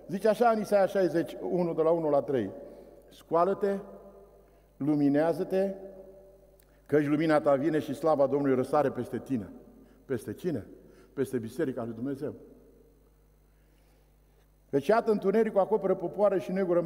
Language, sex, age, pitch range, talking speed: Romanian, male, 50-69, 150-200 Hz, 125 wpm